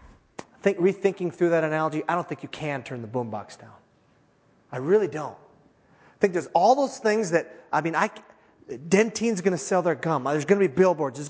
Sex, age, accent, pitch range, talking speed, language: male, 30-49, American, 150-205 Hz, 205 wpm, English